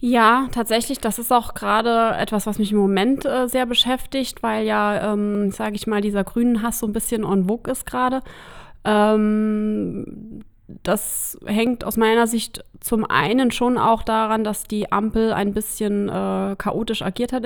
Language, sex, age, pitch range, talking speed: German, female, 20-39, 205-235 Hz, 170 wpm